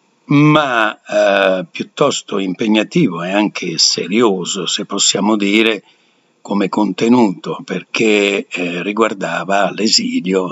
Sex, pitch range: male, 95-115 Hz